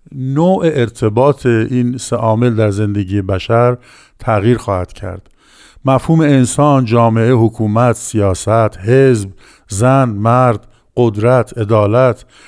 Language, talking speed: Persian, 100 wpm